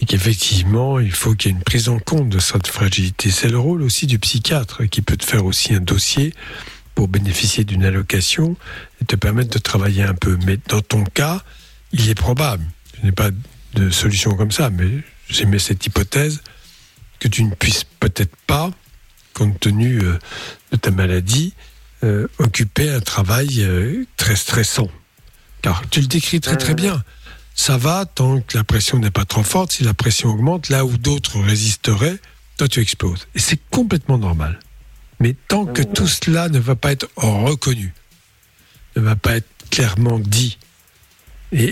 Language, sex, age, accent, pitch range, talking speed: French, male, 60-79, French, 100-130 Hz, 175 wpm